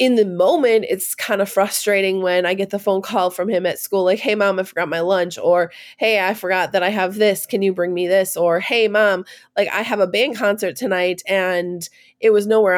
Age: 20-39